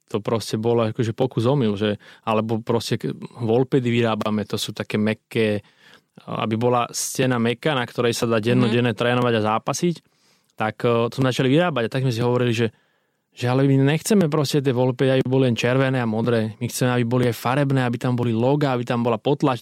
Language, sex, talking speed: Slovak, male, 200 wpm